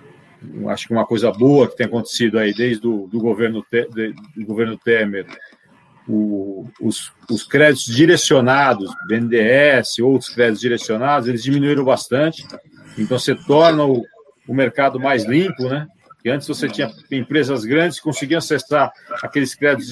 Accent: Brazilian